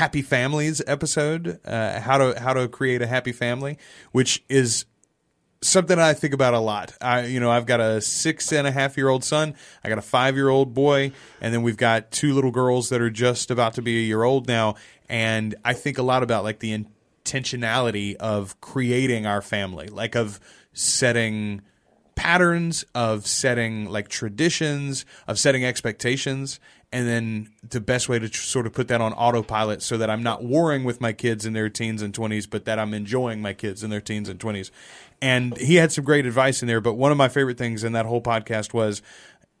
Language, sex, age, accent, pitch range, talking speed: English, male, 30-49, American, 110-135 Hz, 205 wpm